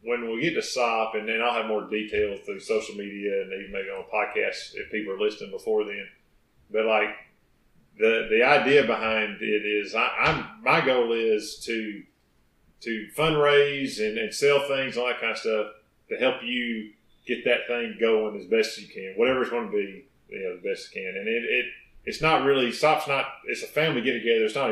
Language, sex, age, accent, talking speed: English, male, 40-59, American, 215 wpm